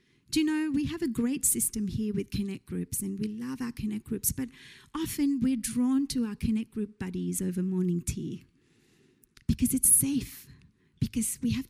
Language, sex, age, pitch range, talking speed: English, female, 40-59, 200-285 Hz, 185 wpm